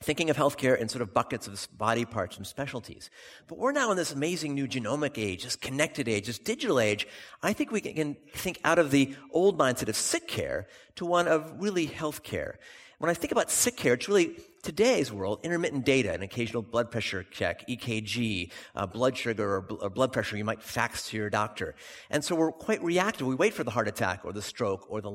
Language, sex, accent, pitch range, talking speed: English, male, American, 110-160 Hz, 225 wpm